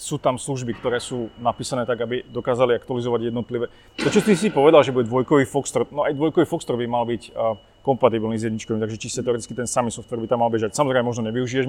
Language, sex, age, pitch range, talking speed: Czech, male, 30-49, 115-145 Hz, 215 wpm